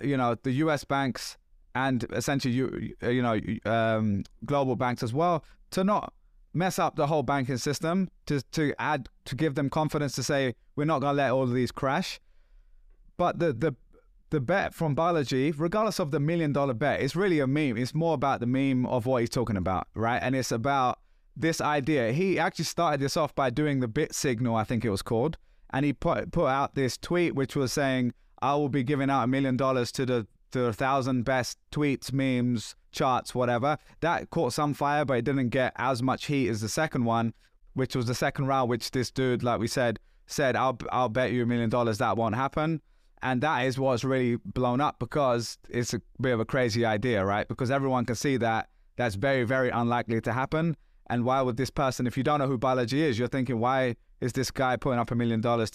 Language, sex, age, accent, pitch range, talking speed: English, male, 20-39, British, 120-145 Hz, 220 wpm